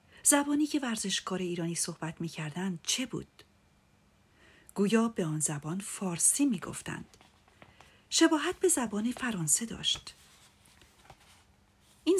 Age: 40-59